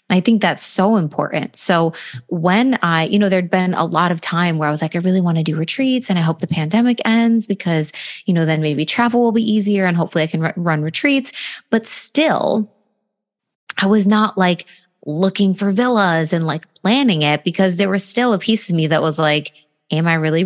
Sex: female